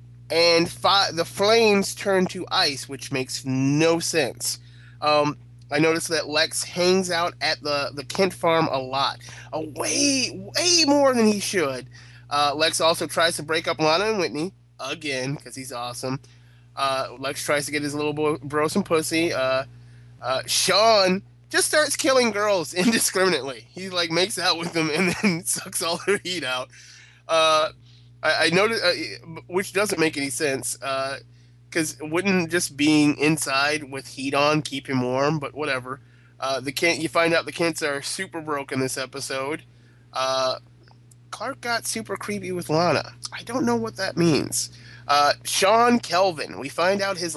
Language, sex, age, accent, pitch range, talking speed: English, male, 20-39, American, 130-170 Hz, 170 wpm